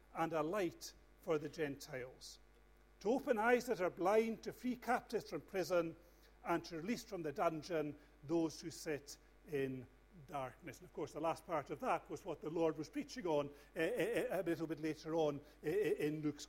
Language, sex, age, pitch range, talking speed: English, male, 50-69, 145-200 Hz, 190 wpm